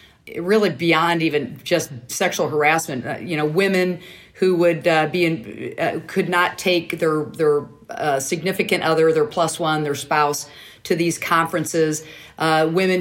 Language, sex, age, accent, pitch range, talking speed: English, female, 40-59, American, 155-185 Hz, 150 wpm